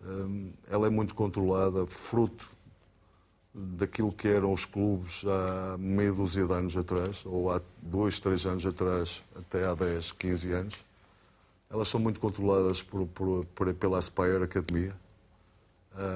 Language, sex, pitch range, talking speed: Portuguese, male, 90-105 Hz, 140 wpm